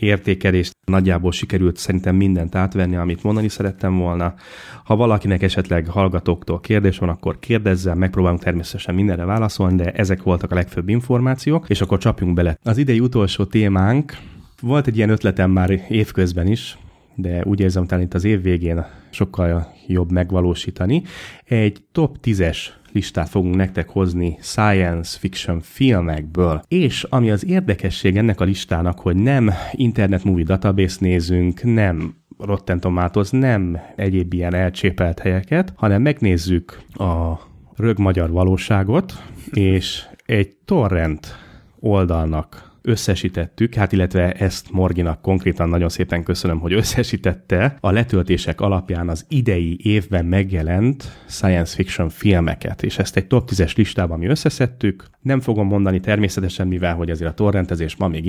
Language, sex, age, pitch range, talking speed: Hungarian, male, 30-49, 90-105 Hz, 135 wpm